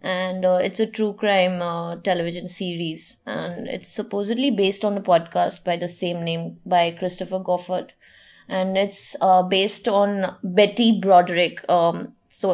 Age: 20-39